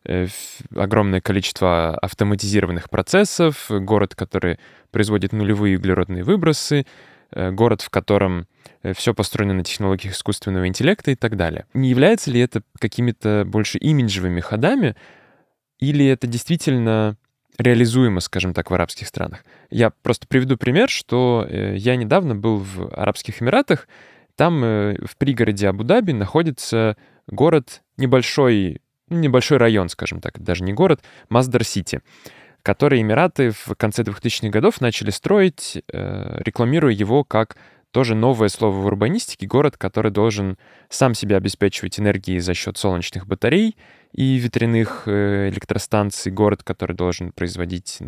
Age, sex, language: 10-29, male, Russian